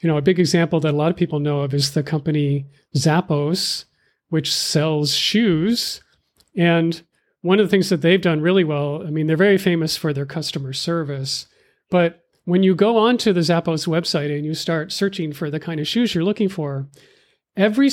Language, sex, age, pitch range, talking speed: English, male, 40-59, 160-200 Hz, 200 wpm